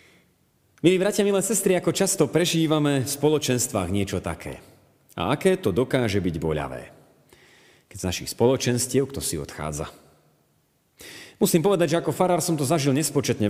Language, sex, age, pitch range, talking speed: Slovak, male, 30-49, 105-165 Hz, 145 wpm